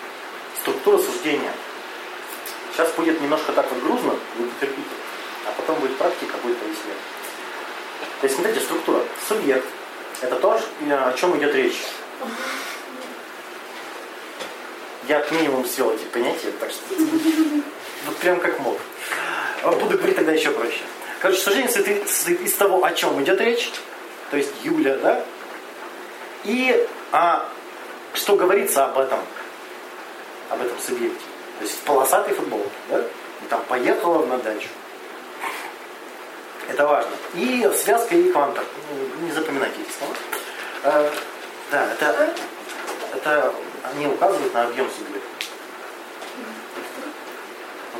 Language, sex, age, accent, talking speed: Russian, male, 30-49, native, 115 wpm